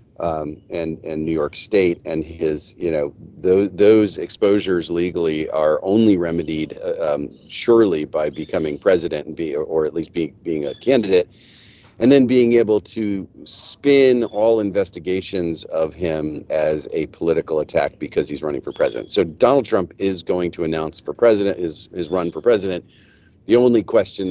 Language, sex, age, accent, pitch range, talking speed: English, male, 40-59, American, 80-110 Hz, 170 wpm